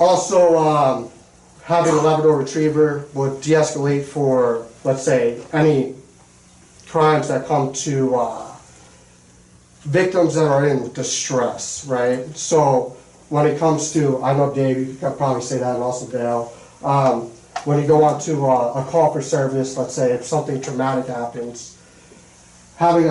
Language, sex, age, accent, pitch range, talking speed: English, male, 40-59, American, 125-150 Hz, 150 wpm